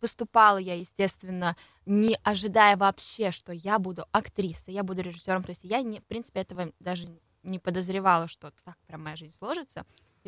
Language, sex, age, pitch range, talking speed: Russian, female, 20-39, 180-215 Hz, 175 wpm